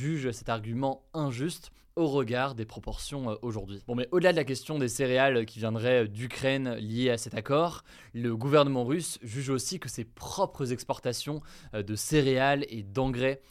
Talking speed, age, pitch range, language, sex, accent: 165 wpm, 20-39, 115-145 Hz, French, male, French